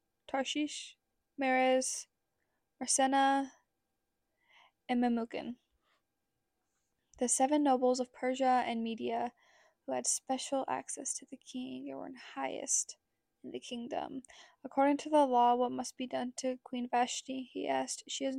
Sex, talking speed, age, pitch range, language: female, 130 wpm, 10-29, 245-275 Hz, English